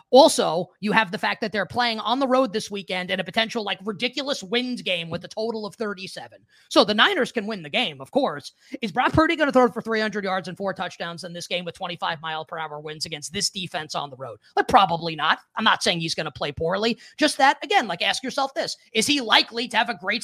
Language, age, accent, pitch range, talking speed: English, 20-39, American, 180-240 Hz, 245 wpm